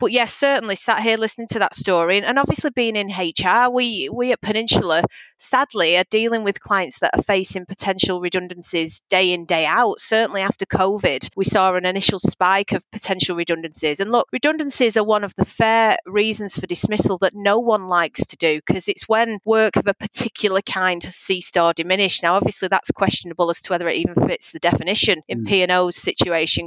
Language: English